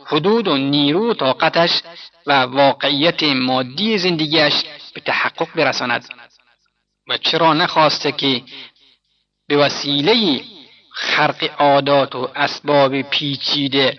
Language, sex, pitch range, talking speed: Persian, male, 135-170 Hz, 100 wpm